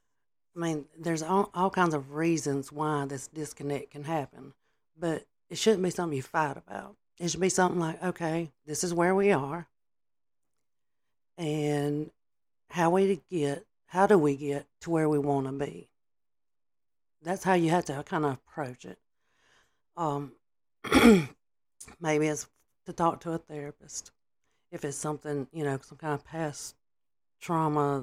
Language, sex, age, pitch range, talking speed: English, female, 50-69, 145-165 Hz, 155 wpm